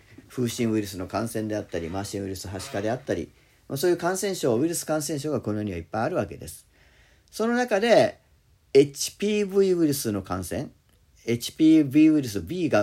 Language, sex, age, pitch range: Japanese, male, 40-59, 100-150 Hz